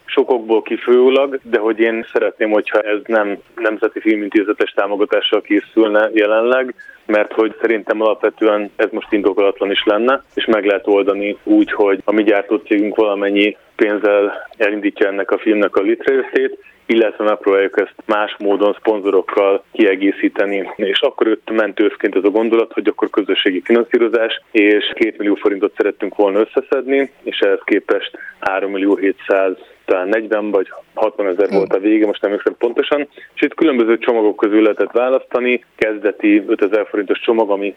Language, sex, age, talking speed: Hungarian, male, 20-39, 150 wpm